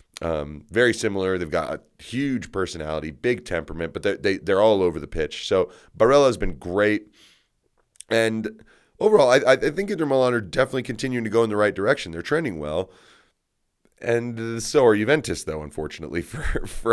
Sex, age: male, 30-49